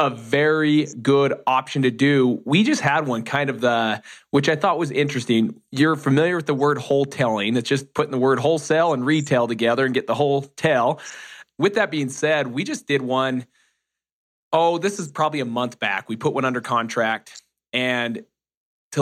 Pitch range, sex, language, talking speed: 130-160 Hz, male, English, 190 wpm